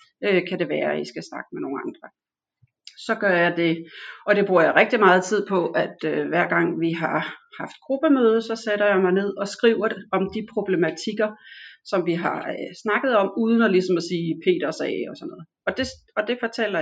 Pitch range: 165-215 Hz